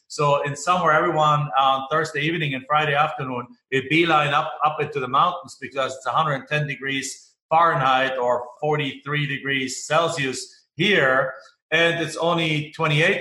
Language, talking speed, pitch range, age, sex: English, 145 wpm, 130-155 Hz, 40-59, male